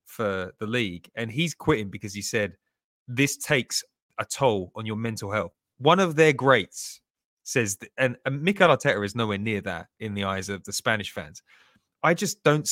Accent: British